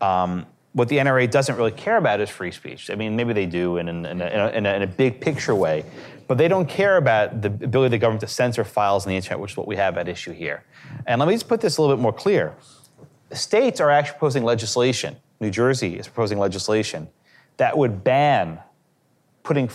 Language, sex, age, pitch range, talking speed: English, male, 30-49, 105-155 Hz, 235 wpm